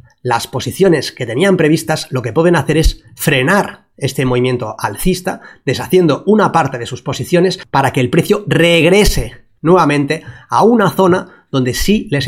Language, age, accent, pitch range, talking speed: Spanish, 30-49, Spanish, 130-175 Hz, 155 wpm